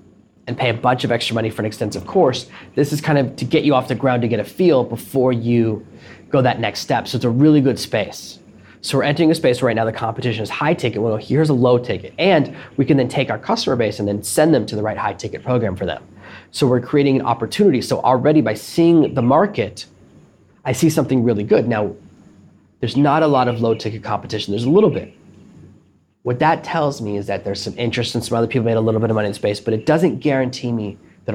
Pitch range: 110-130 Hz